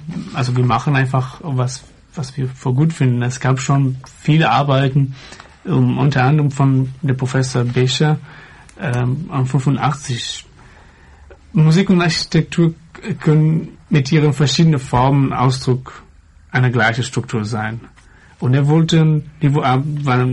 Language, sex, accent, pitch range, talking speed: English, male, German, 130-160 Hz, 125 wpm